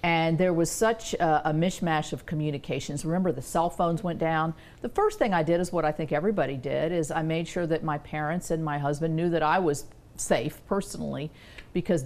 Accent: American